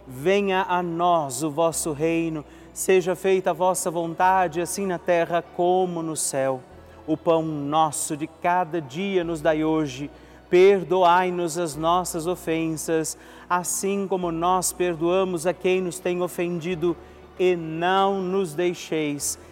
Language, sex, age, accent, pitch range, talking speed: Portuguese, male, 40-59, Brazilian, 155-185 Hz, 130 wpm